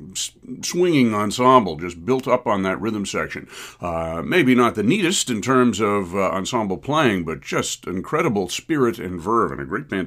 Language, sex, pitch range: English, male, 95-130 Hz